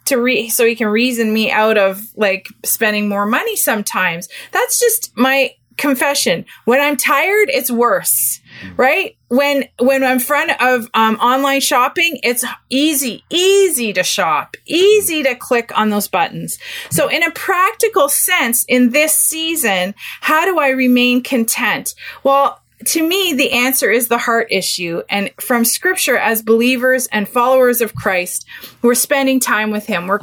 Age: 30-49